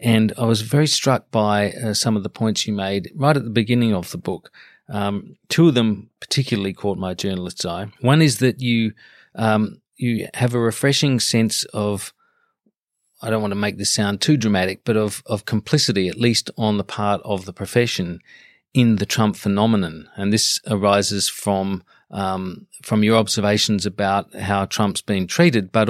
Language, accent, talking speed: English, Australian, 185 wpm